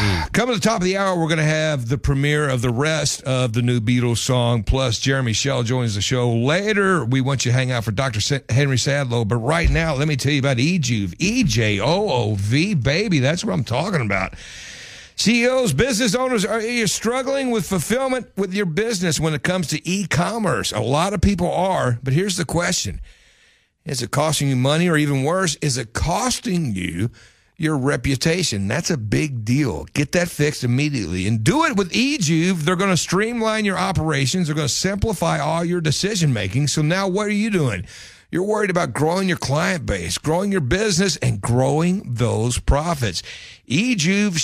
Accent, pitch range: American, 125-185 Hz